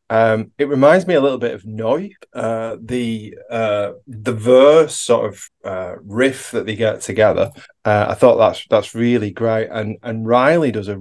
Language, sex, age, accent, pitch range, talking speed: English, male, 30-49, British, 110-135 Hz, 180 wpm